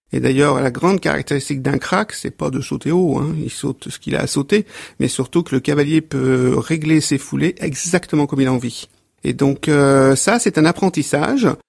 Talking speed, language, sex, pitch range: 210 wpm, French, male, 145-180 Hz